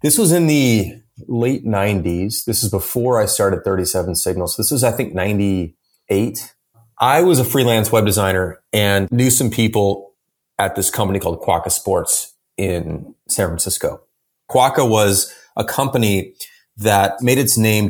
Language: English